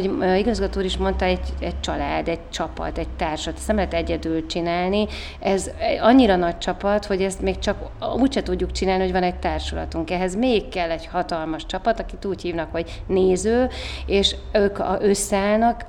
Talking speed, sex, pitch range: 170 wpm, female, 160-200 Hz